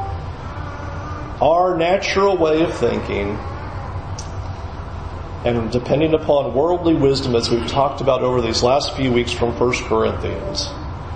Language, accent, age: English, American, 40-59